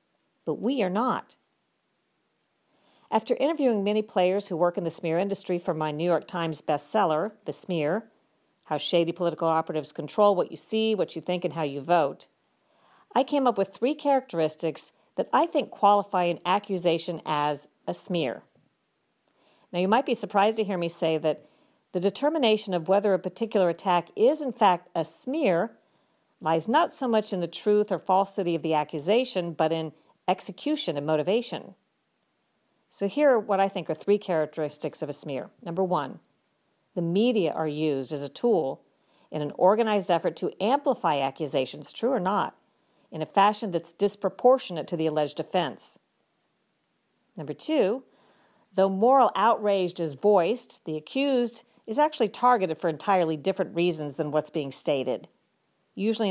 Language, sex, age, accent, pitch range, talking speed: English, female, 50-69, American, 160-215 Hz, 160 wpm